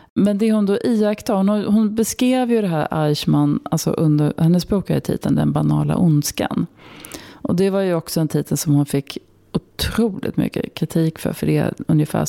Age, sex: 30-49, female